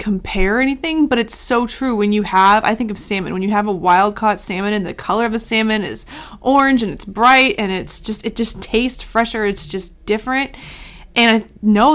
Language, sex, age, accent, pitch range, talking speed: English, female, 20-39, American, 190-230 Hz, 220 wpm